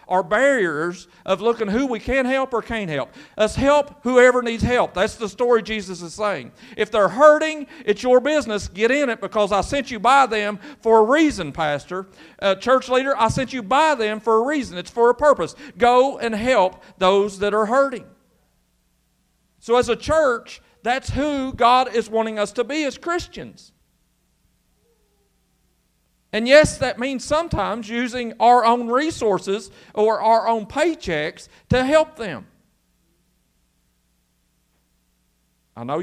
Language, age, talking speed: English, 50-69, 160 wpm